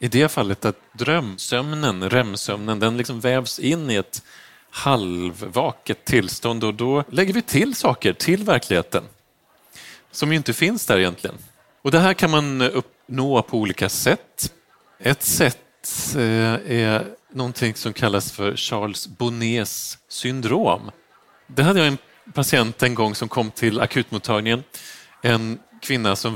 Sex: male